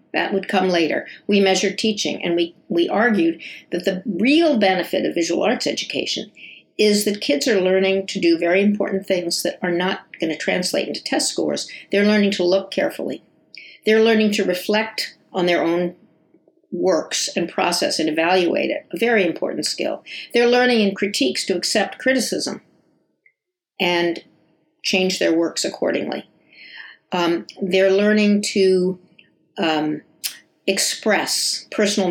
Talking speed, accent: 150 wpm, American